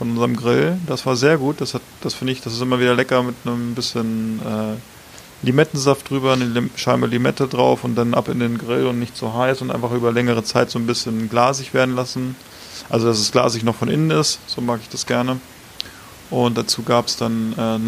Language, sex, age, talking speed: German, male, 20-39, 220 wpm